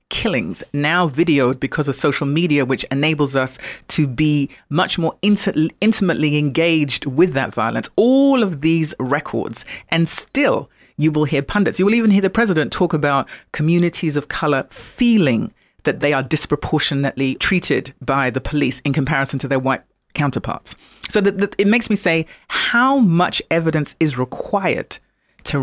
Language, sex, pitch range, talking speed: English, female, 140-185 Hz, 160 wpm